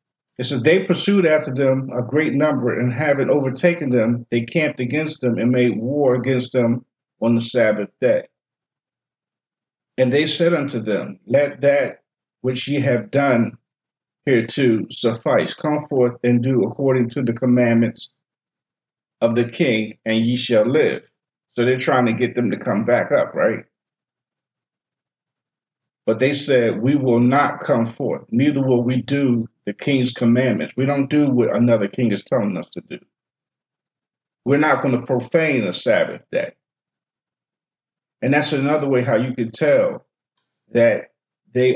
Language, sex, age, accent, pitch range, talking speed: English, male, 50-69, American, 120-140 Hz, 155 wpm